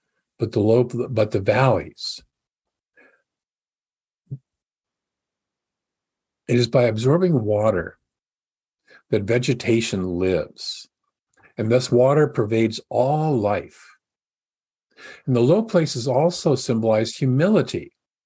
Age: 50-69